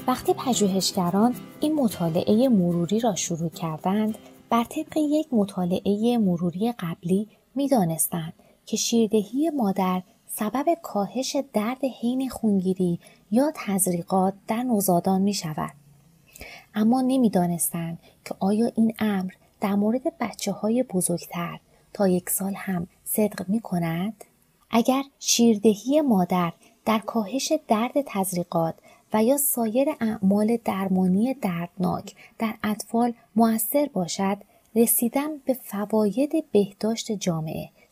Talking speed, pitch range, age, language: 105 wpm, 185-245 Hz, 30-49, Persian